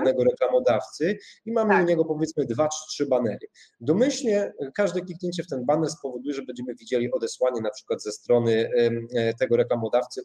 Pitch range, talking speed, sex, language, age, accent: 125-175 Hz, 160 wpm, male, Polish, 30-49, native